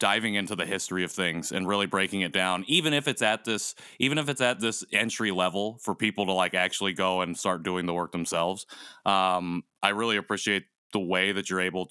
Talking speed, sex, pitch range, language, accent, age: 220 wpm, male, 90-105 Hz, English, American, 20-39